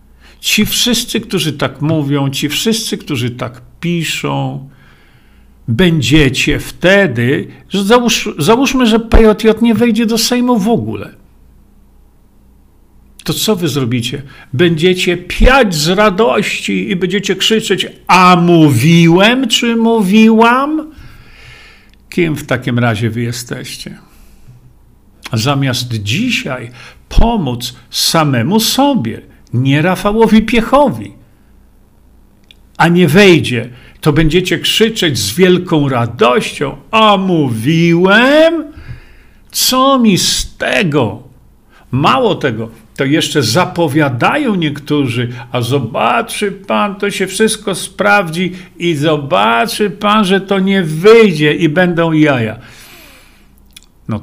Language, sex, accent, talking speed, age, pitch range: Polish, male, native, 100 wpm, 50-69, 140-215 Hz